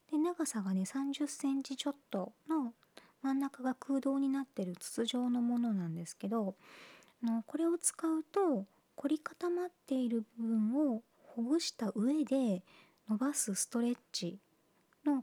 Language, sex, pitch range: Japanese, male, 200-285 Hz